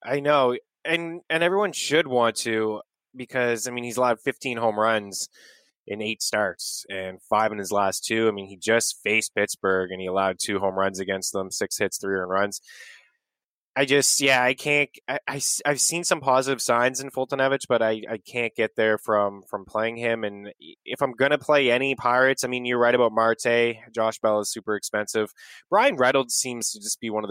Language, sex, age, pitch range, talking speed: English, male, 20-39, 100-125 Hz, 205 wpm